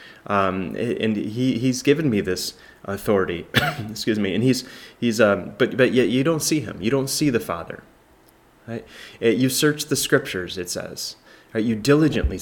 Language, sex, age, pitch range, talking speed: English, male, 30-49, 100-135 Hz, 180 wpm